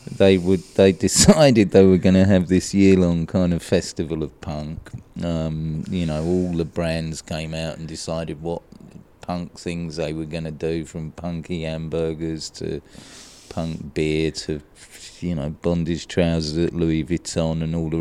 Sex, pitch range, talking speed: male, 80-95 Hz, 170 wpm